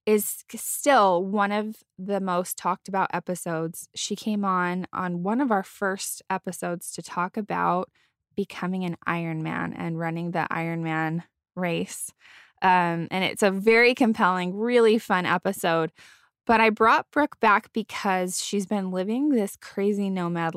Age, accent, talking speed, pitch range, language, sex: 10-29, American, 145 wpm, 175-215 Hz, English, female